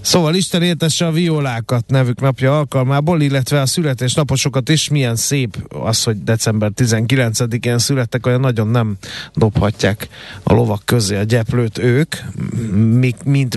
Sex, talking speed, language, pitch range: male, 135 wpm, Hungarian, 110-135 Hz